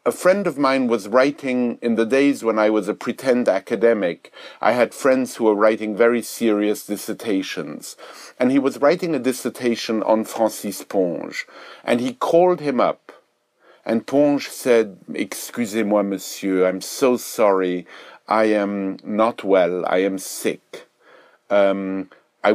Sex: male